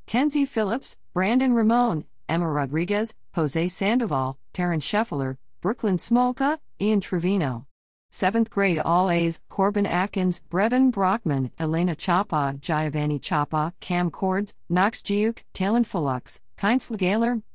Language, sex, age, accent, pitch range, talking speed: English, female, 50-69, American, 160-215 Hz, 115 wpm